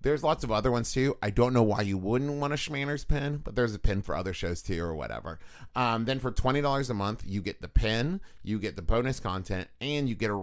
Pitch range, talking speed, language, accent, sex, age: 95-130 Hz, 260 wpm, English, American, male, 30-49